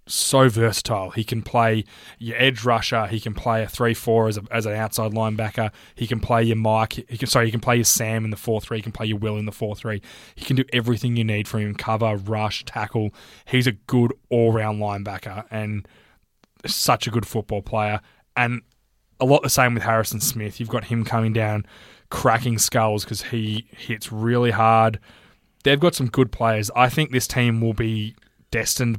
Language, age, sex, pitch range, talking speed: English, 20-39, male, 110-120 Hz, 195 wpm